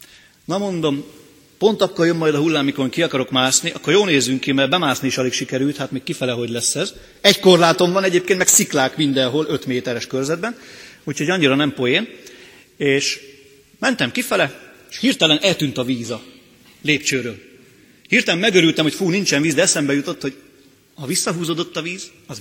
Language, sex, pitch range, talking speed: Hungarian, male, 130-170 Hz, 175 wpm